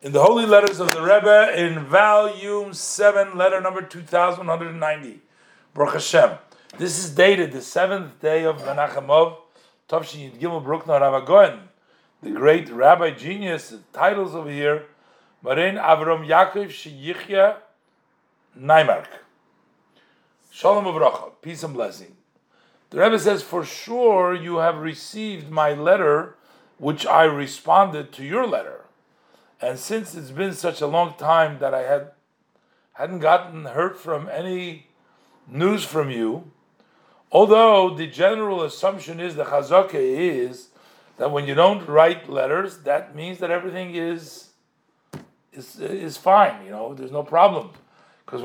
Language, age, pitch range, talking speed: English, 50-69, 155-190 Hz, 130 wpm